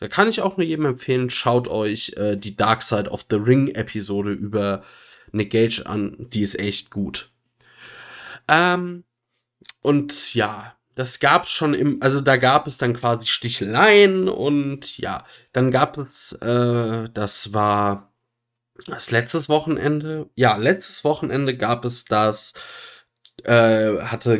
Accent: German